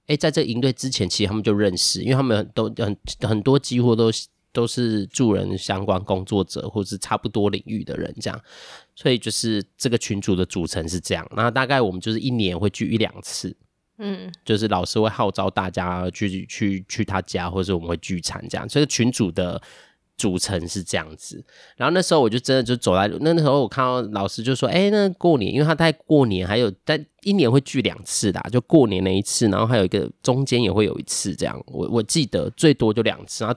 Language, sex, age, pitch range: Chinese, male, 20-39, 100-125 Hz